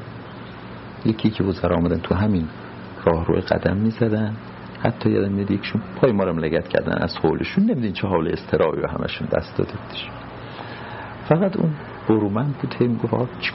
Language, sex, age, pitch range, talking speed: Persian, male, 50-69, 100-125 Hz, 165 wpm